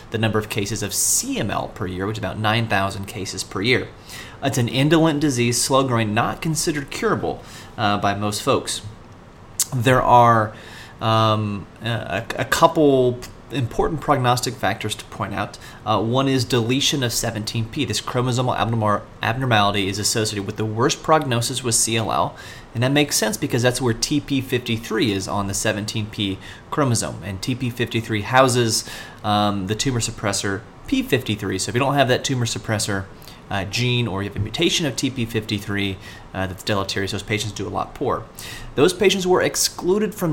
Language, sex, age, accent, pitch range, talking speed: English, male, 30-49, American, 105-130 Hz, 160 wpm